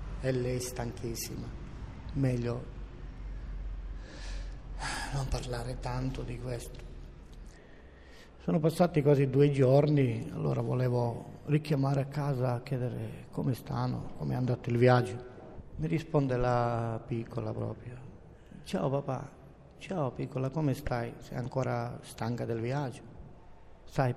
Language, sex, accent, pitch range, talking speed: Italian, male, native, 115-140 Hz, 110 wpm